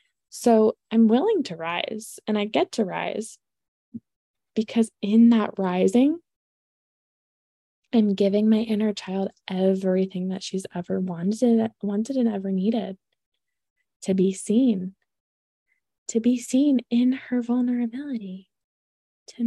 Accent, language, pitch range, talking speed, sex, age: American, English, 190-225 Hz, 115 wpm, female, 20-39